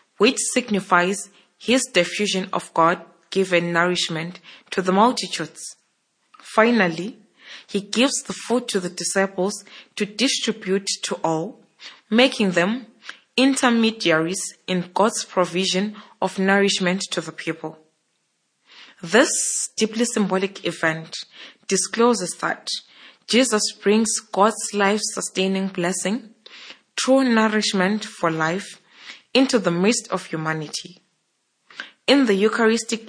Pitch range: 180-225 Hz